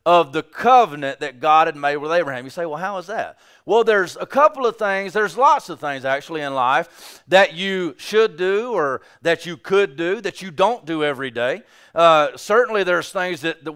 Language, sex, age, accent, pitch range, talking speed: English, male, 40-59, American, 160-215 Hz, 215 wpm